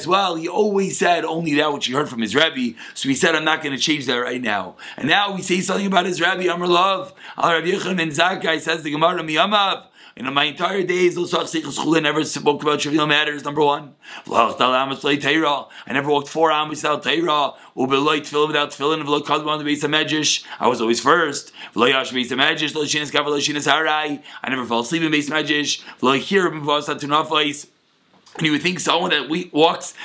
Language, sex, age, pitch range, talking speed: English, male, 30-49, 150-180 Hz, 150 wpm